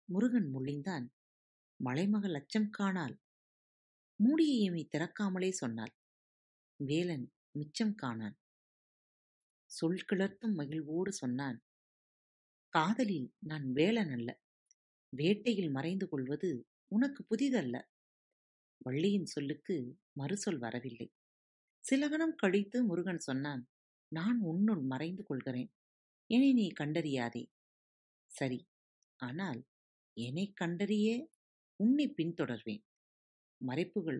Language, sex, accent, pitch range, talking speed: Tamil, female, native, 130-210 Hz, 75 wpm